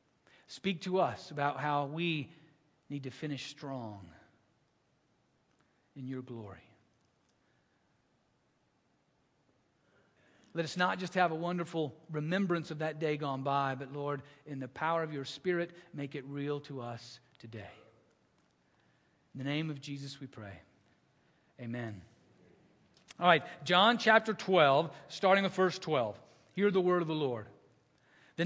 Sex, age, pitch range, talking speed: male, 50-69, 140-225 Hz, 135 wpm